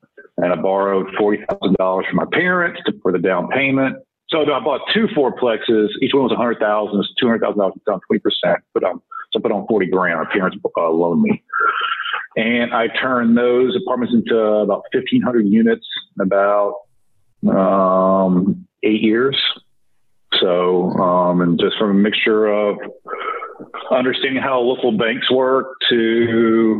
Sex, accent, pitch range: male, American, 100-130 Hz